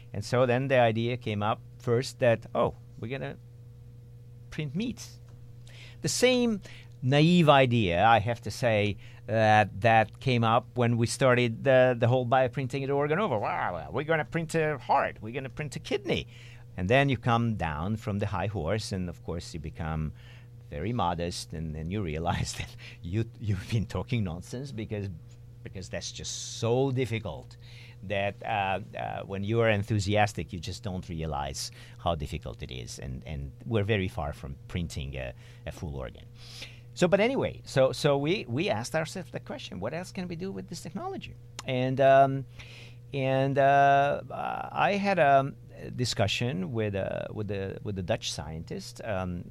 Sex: male